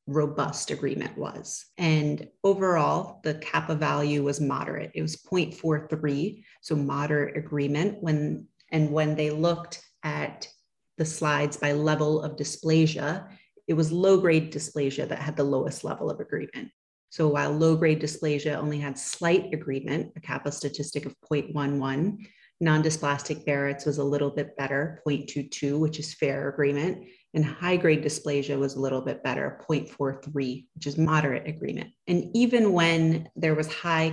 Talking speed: 150 wpm